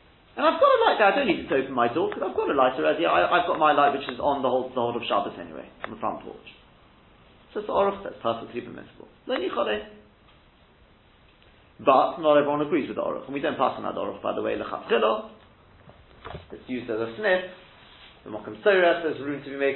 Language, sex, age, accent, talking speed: English, male, 40-59, British, 220 wpm